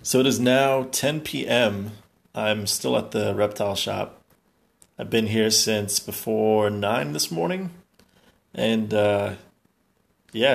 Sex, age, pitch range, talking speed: male, 20-39, 105-120 Hz, 130 wpm